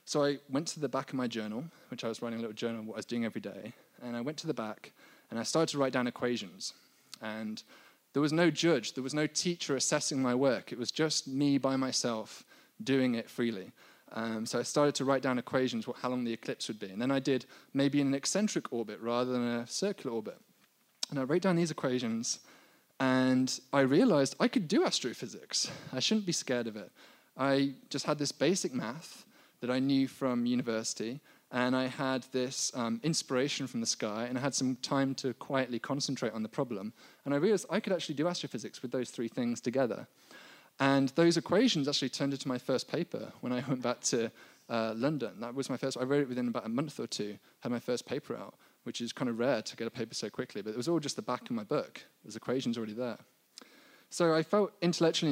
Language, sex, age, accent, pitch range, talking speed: English, male, 20-39, British, 120-145 Hz, 230 wpm